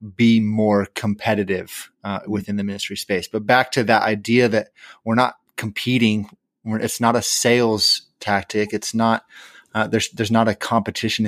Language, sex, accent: English, male, American